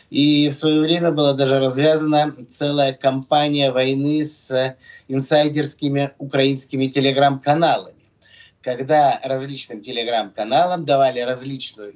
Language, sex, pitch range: Russian, male, 130-165 Hz